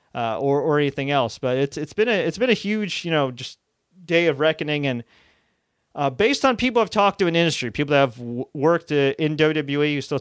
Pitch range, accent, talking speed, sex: 125-170 Hz, American, 230 wpm, male